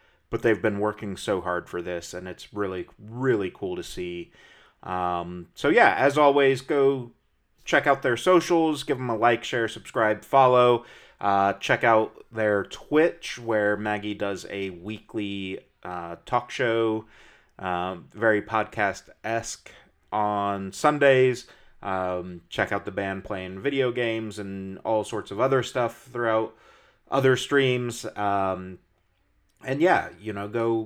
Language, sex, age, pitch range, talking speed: English, male, 30-49, 95-120 Hz, 145 wpm